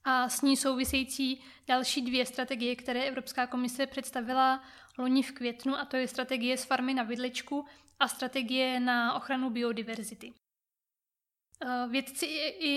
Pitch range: 245-275 Hz